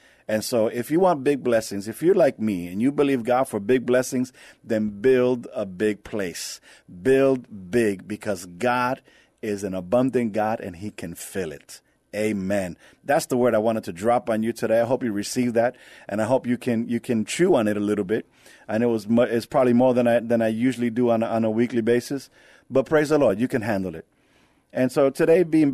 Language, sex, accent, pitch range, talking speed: English, male, American, 110-130 Hz, 220 wpm